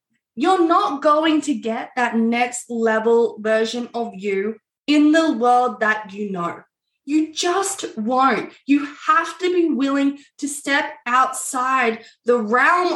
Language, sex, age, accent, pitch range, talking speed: English, female, 20-39, Australian, 230-320 Hz, 140 wpm